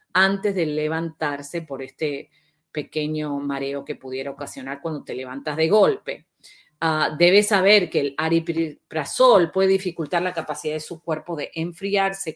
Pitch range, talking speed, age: 150-175 Hz, 145 wpm, 40-59